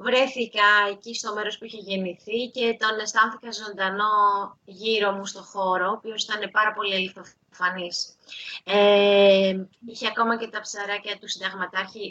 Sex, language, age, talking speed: female, Greek, 20-39, 145 wpm